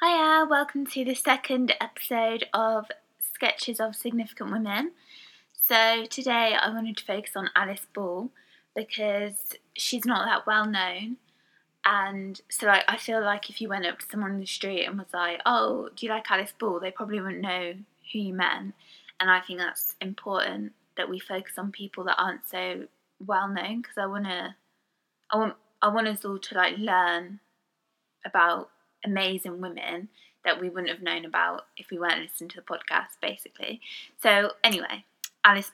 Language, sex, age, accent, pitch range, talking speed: English, female, 20-39, British, 185-225 Hz, 175 wpm